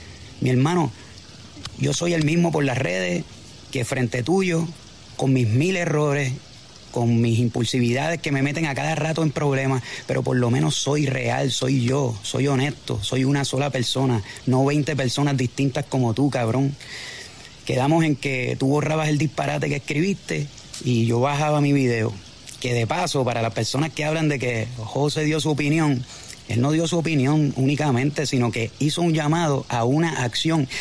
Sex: male